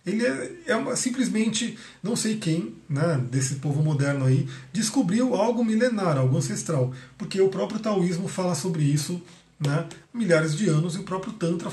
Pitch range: 145-185 Hz